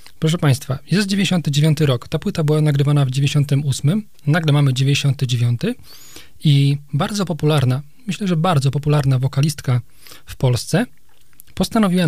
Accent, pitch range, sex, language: native, 135-150 Hz, male, Polish